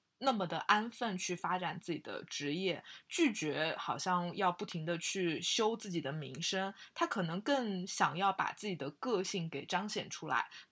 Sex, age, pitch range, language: female, 20-39, 170-215 Hz, Chinese